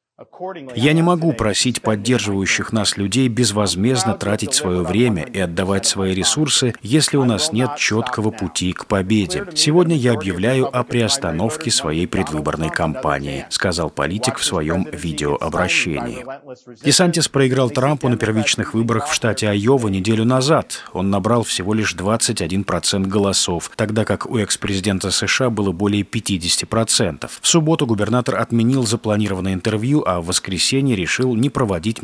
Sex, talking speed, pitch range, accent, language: male, 140 wpm, 95-125 Hz, native, Russian